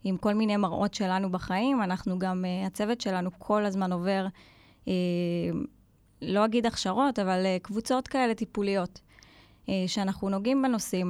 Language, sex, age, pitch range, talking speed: Hebrew, female, 20-39, 185-220 Hz, 125 wpm